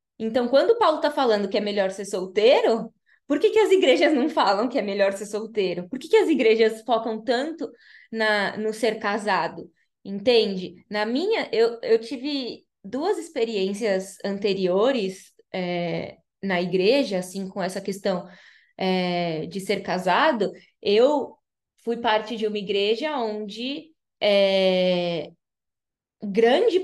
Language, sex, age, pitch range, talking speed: Portuguese, female, 20-39, 195-270 Hz, 140 wpm